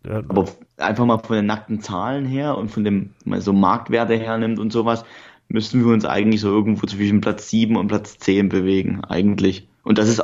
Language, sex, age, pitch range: German, male, 20-39, 105-120 Hz